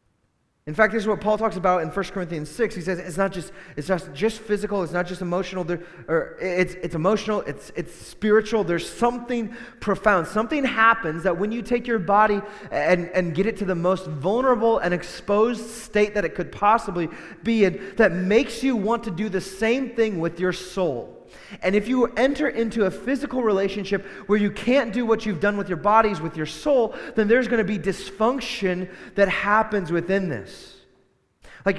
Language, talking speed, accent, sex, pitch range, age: English, 195 wpm, American, male, 175-220 Hz, 20-39